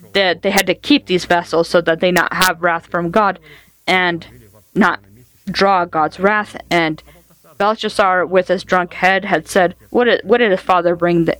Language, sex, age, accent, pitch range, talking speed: English, female, 20-39, American, 155-190 Hz, 160 wpm